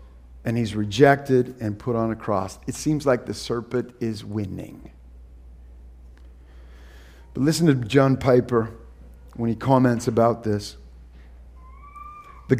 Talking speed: 125 wpm